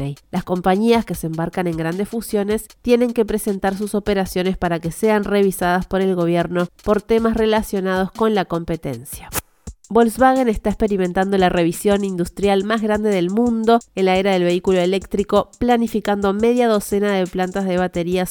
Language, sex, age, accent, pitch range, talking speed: Spanish, female, 30-49, Argentinian, 180-215 Hz, 160 wpm